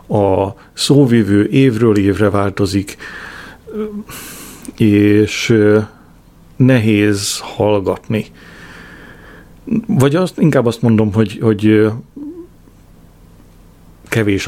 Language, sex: Hungarian, male